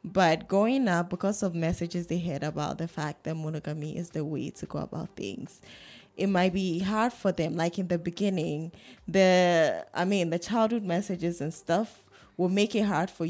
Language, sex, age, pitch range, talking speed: English, female, 10-29, 160-195 Hz, 195 wpm